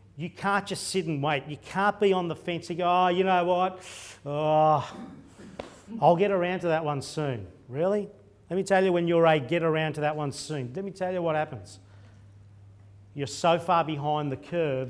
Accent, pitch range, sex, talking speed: Australian, 145-185 Hz, male, 210 wpm